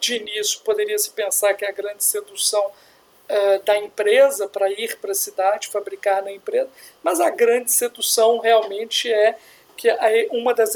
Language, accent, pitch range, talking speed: Portuguese, Brazilian, 210-335 Hz, 155 wpm